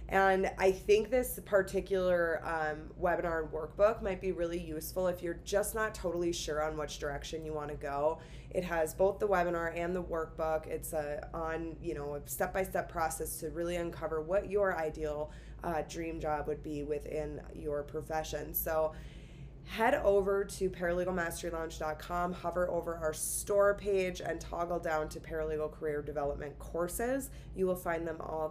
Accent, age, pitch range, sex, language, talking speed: American, 20-39, 155-180 Hz, female, English, 170 wpm